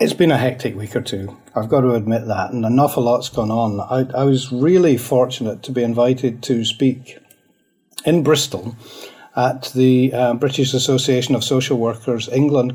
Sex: male